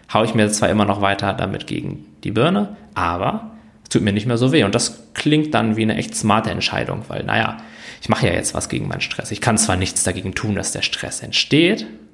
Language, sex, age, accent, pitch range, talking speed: German, male, 20-39, German, 100-125 Hz, 235 wpm